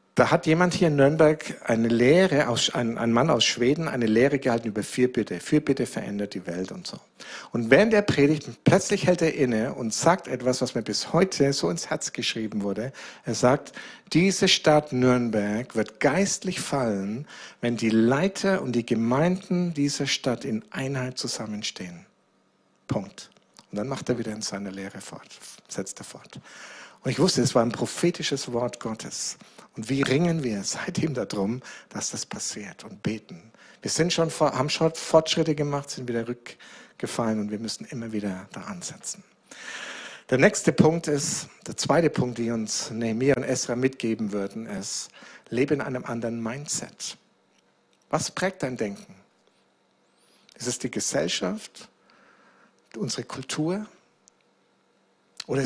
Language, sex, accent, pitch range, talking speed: German, male, German, 115-165 Hz, 160 wpm